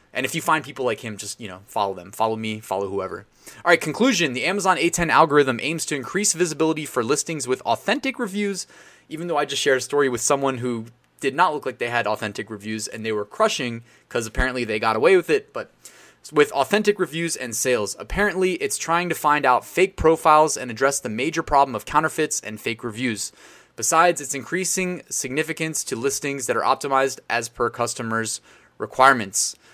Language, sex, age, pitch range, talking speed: English, male, 20-39, 120-160 Hz, 200 wpm